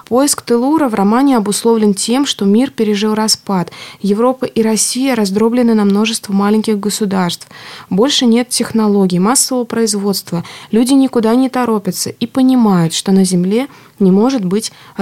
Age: 20-39